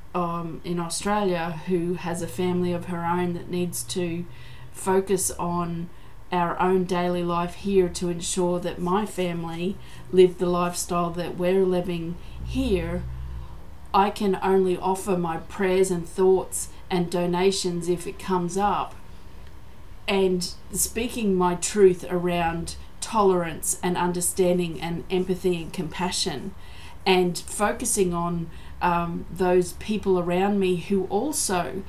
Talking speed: 130 wpm